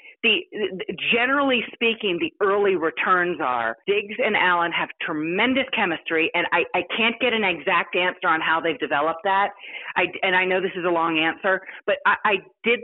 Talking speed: 185 wpm